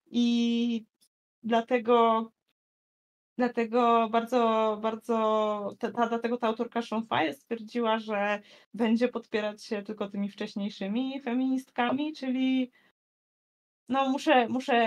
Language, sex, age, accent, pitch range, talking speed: Polish, female, 20-39, native, 200-235 Hz, 95 wpm